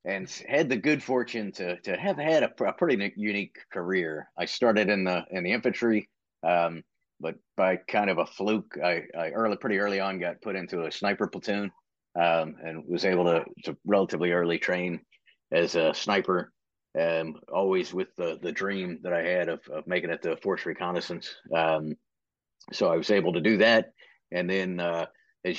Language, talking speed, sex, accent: English, 190 wpm, male, American